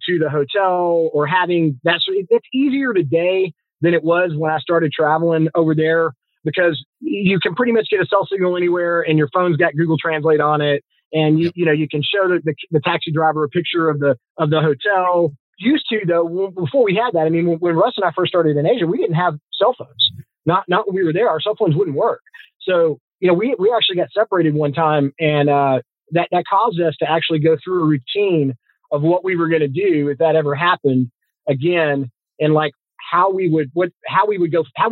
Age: 30-49